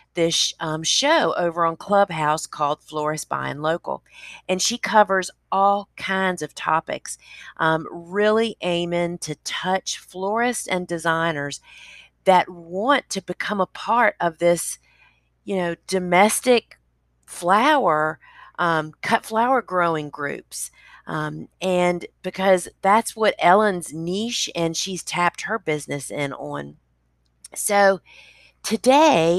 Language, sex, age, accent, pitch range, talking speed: English, female, 40-59, American, 155-190 Hz, 120 wpm